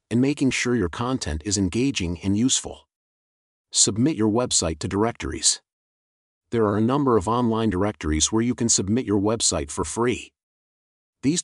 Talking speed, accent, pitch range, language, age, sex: 155 wpm, American, 85-120 Hz, English, 40-59, male